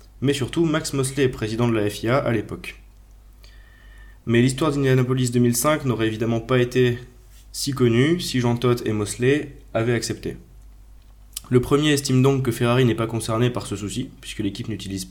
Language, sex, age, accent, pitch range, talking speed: French, male, 20-39, French, 105-130 Hz, 165 wpm